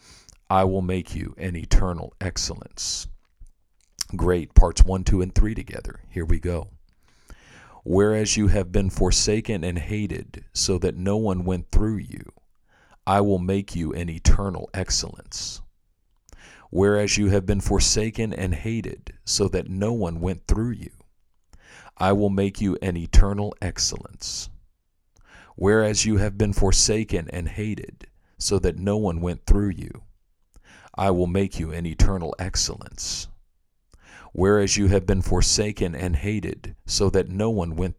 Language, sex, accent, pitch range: English, male, American, 90-105 Hz